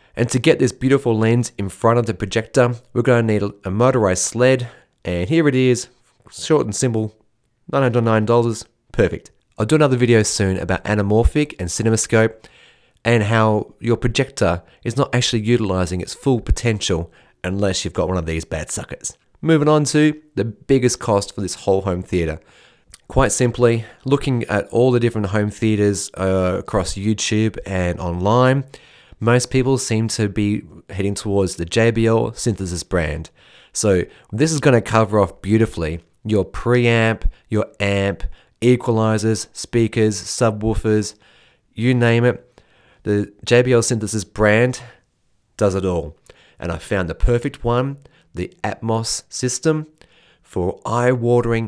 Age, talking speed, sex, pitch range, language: 30-49, 145 wpm, male, 100-125 Hz, English